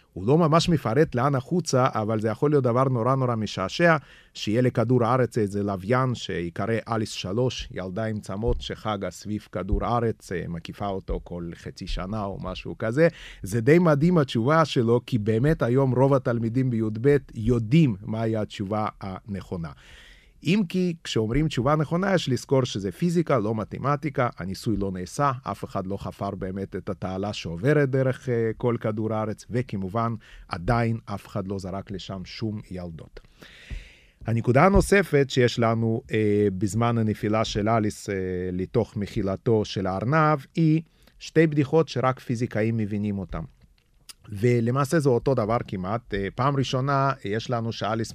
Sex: male